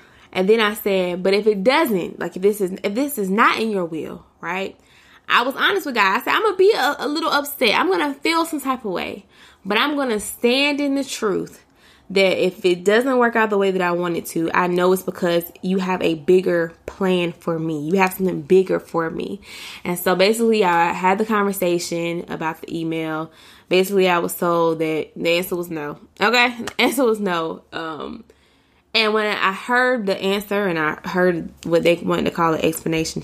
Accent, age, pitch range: American, 20-39, 170-245 Hz